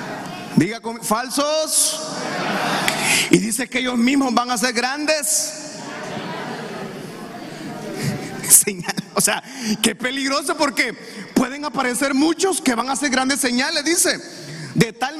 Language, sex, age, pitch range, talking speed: Spanish, male, 30-49, 210-285 Hz, 110 wpm